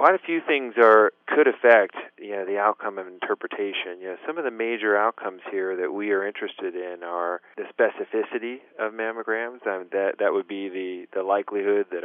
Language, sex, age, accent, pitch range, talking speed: English, male, 40-59, American, 95-115 Hz, 200 wpm